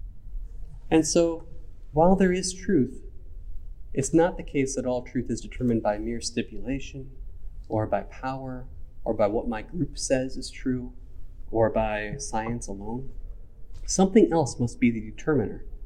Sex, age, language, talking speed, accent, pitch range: male, 30-49, English, 150 wpm, American, 100-135 Hz